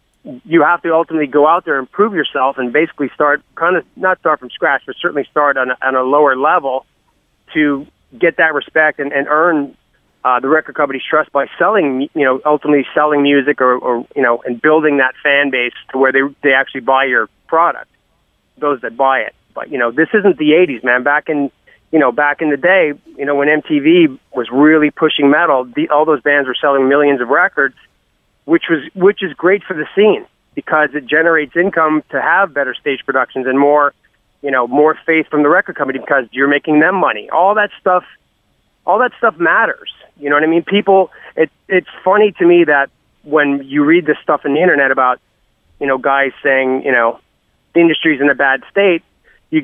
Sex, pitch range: male, 140-170 Hz